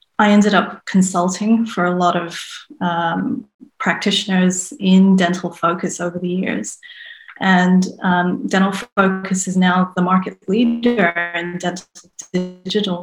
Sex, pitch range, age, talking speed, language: female, 180-210 Hz, 30-49, 130 wpm, English